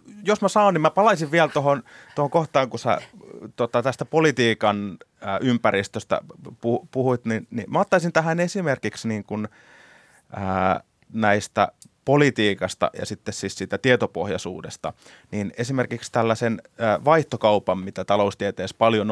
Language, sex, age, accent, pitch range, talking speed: Finnish, male, 30-49, native, 105-130 Hz, 95 wpm